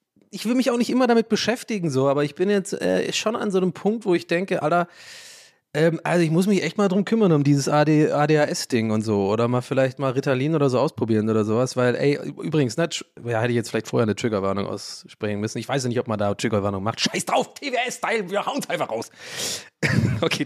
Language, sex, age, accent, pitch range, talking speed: German, male, 30-49, German, 120-170 Hz, 240 wpm